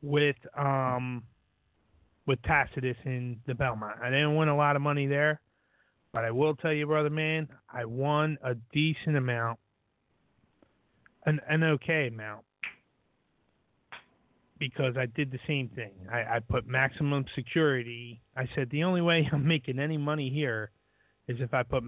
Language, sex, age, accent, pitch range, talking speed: English, male, 30-49, American, 120-150 Hz, 155 wpm